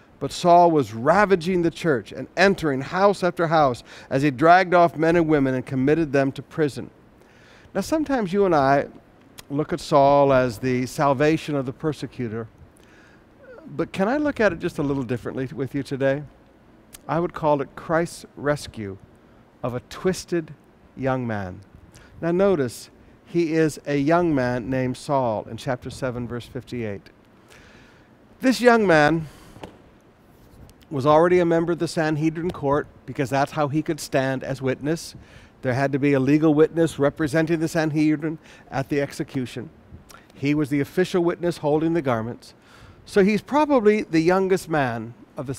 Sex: male